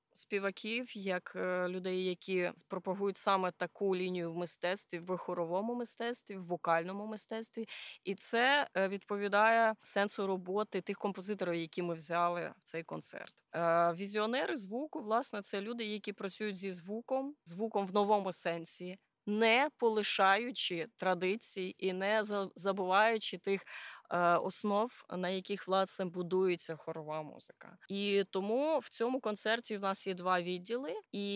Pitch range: 185-220 Hz